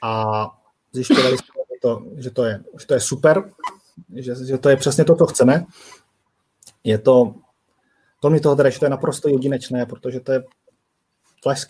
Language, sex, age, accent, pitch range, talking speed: Czech, male, 30-49, native, 130-165 Hz, 165 wpm